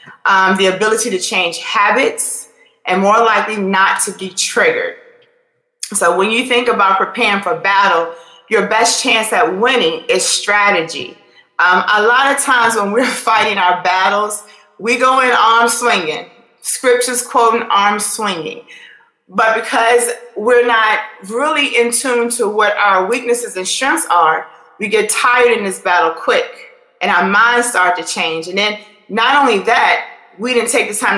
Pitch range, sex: 205-250 Hz, female